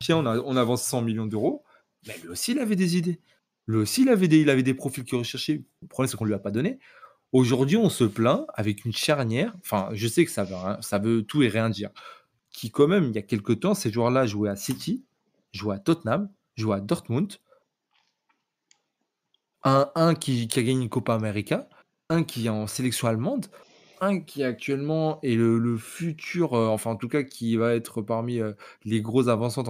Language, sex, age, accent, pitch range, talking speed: French, male, 30-49, French, 110-165 Hz, 220 wpm